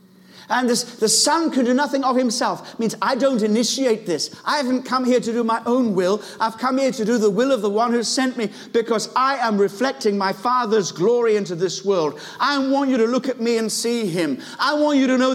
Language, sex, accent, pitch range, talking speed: English, male, British, 185-245 Hz, 245 wpm